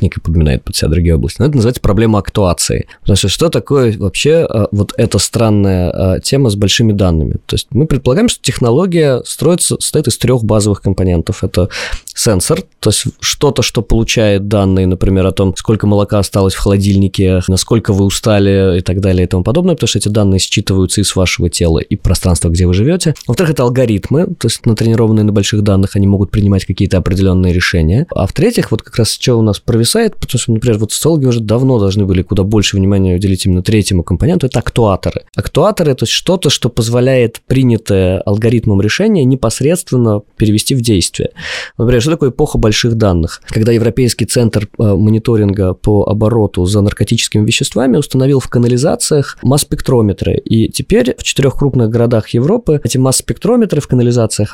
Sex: male